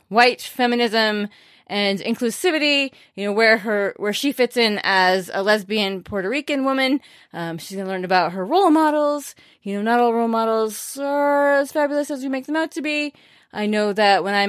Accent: American